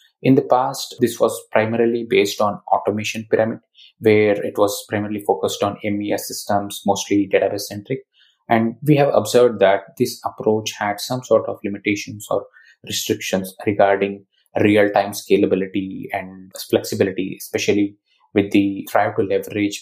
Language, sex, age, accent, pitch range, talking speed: English, male, 20-39, Indian, 100-125 Hz, 130 wpm